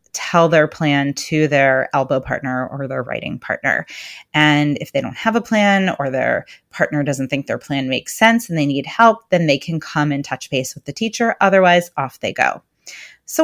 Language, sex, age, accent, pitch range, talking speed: English, female, 30-49, American, 150-200 Hz, 205 wpm